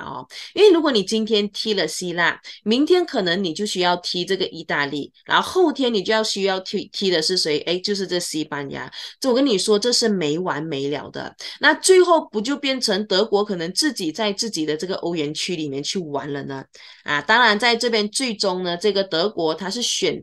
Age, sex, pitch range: 20-39, female, 160-220 Hz